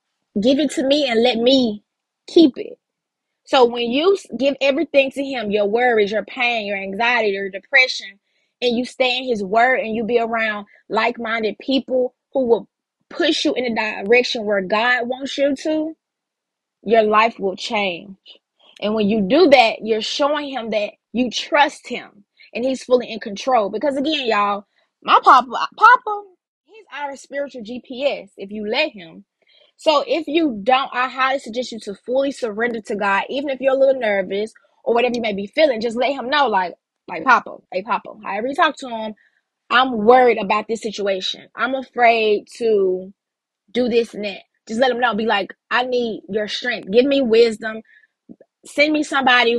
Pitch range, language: 220-270 Hz, English